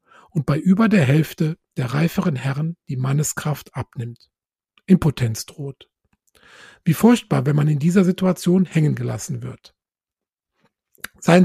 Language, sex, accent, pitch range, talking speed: German, male, German, 140-180 Hz, 125 wpm